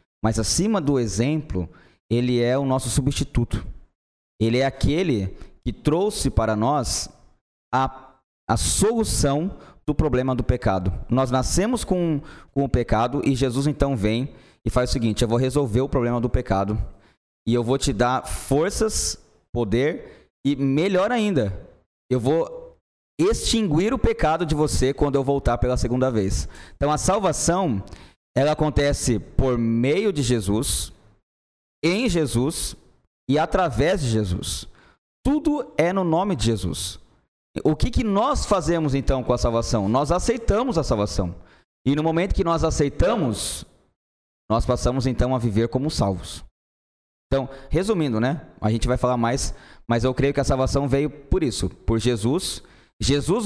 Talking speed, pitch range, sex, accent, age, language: 150 wpm, 110-145 Hz, male, Brazilian, 20-39, Portuguese